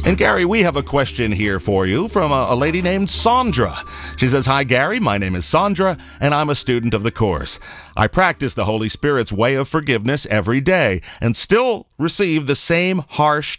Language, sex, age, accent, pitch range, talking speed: English, male, 40-59, American, 100-150 Hz, 205 wpm